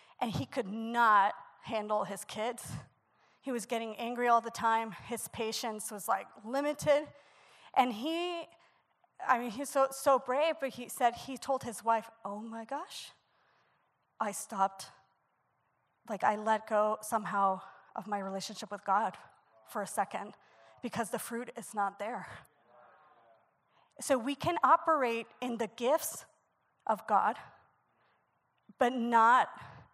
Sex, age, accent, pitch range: female, 30-49, American, 225-275 Hz